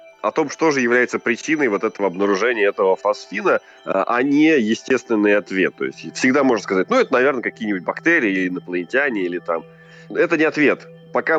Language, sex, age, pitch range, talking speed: Russian, male, 20-39, 105-165 Hz, 170 wpm